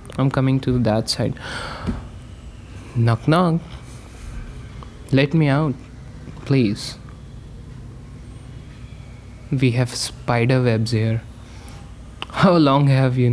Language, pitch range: English, 105-135 Hz